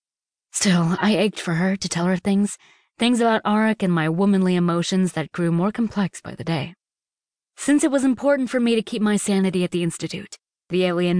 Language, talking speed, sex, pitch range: English, 205 wpm, female, 170-205 Hz